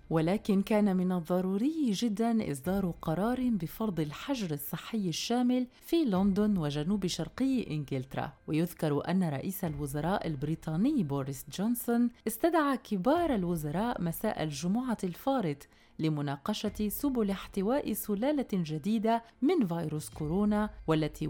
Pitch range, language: 160-230 Hz, Arabic